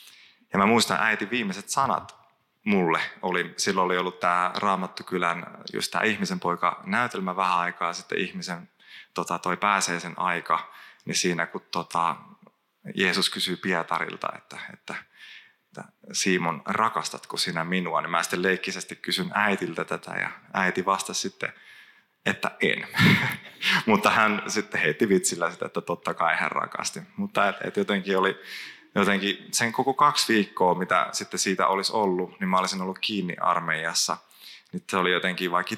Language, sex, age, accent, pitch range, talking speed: Finnish, male, 20-39, native, 85-95 Hz, 155 wpm